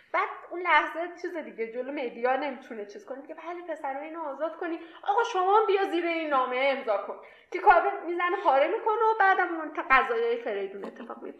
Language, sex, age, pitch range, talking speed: Persian, female, 10-29, 250-335 Hz, 190 wpm